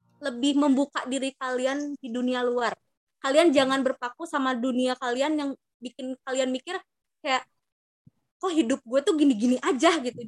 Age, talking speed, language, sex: 20-39, 145 wpm, Indonesian, female